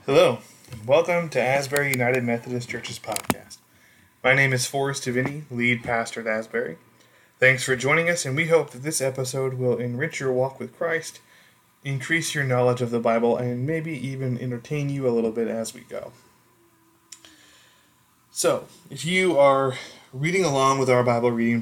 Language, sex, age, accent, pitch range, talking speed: English, male, 20-39, American, 120-140 Hz, 170 wpm